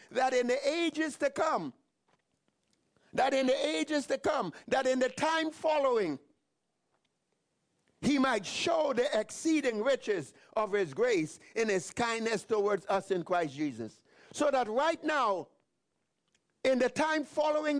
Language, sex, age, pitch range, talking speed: English, male, 50-69, 235-300 Hz, 140 wpm